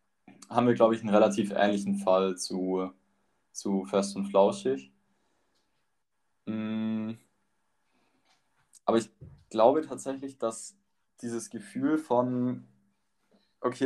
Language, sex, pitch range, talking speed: German, male, 110-125 Hz, 95 wpm